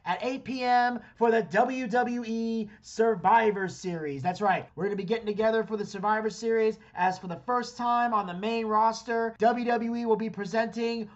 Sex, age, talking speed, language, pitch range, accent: male, 30-49, 175 wpm, English, 175-225 Hz, American